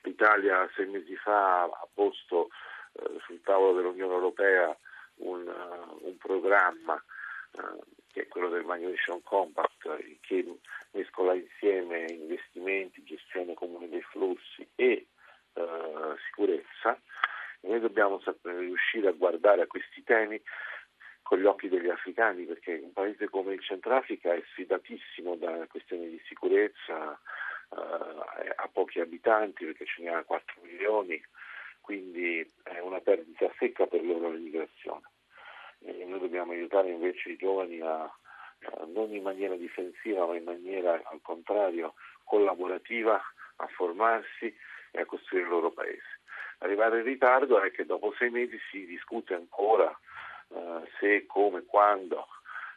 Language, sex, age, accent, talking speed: Italian, male, 50-69, native, 135 wpm